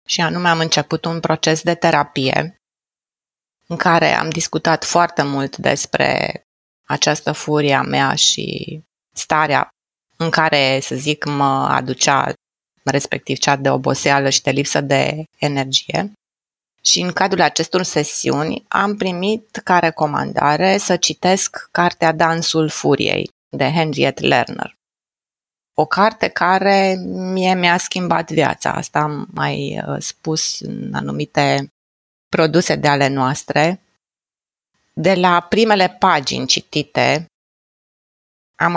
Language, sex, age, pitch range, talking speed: Romanian, female, 20-39, 145-175 Hz, 115 wpm